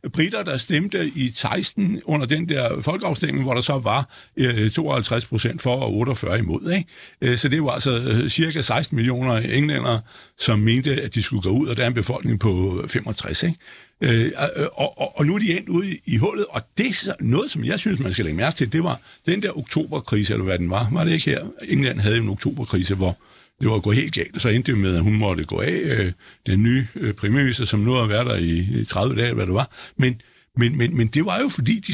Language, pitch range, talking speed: Danish, 115-165 Hz, 235 wpm